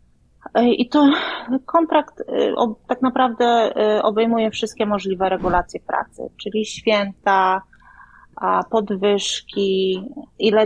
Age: 30-49